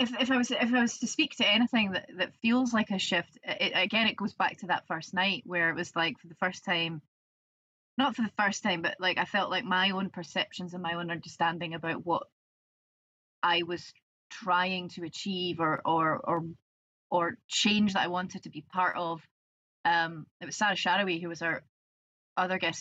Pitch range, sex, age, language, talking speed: 165-195 Hz, female, 20-39, English, 215 wpm